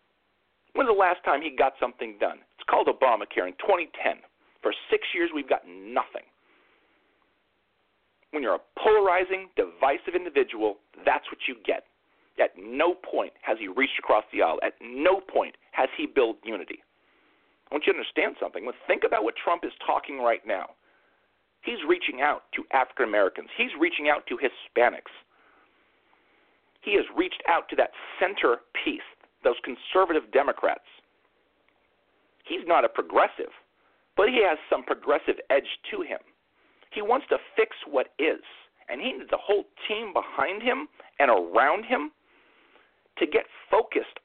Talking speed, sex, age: 155 wpm, male, 40-59